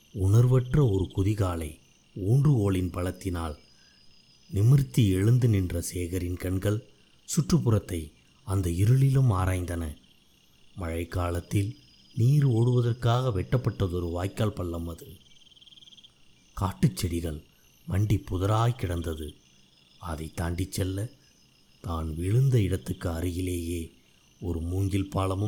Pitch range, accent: 80-115 Hz, native